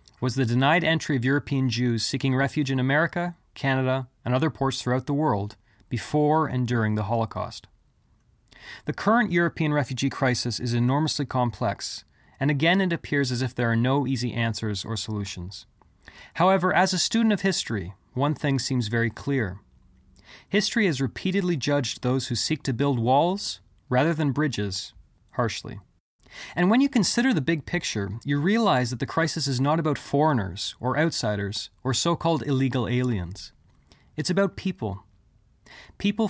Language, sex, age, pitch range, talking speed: English, male, 30-49, 110-160 Hz, 155 wpm